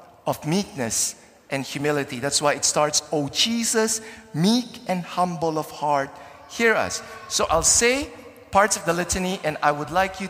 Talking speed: 170 wpm